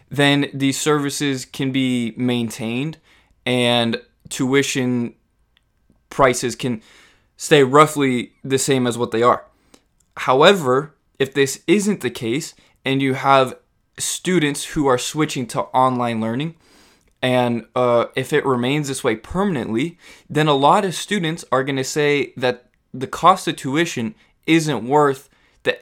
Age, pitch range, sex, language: 20-39, 120-145 Hz, male, English